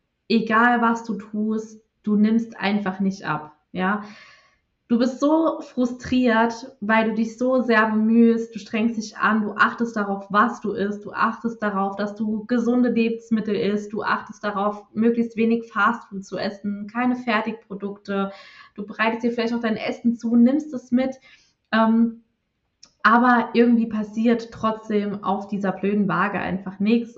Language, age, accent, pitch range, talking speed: German, 20-39, German, 195-230 Hz, 155 wpm